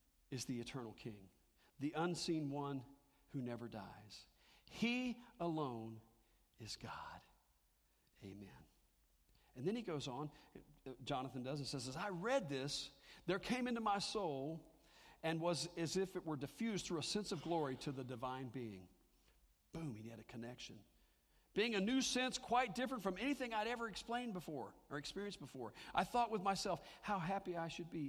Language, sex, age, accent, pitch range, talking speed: English, male, 50-69, American, 110-175 Hz, 165 wpm